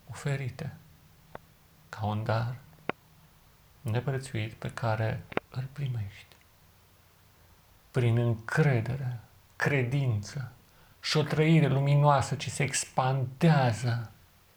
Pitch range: 90-125 Hz